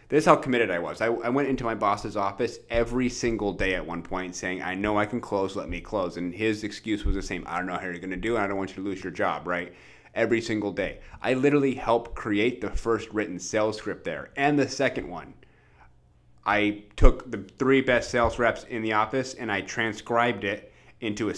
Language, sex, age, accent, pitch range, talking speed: English, male, 30-49, American, 100-120 Hz, 240 wpm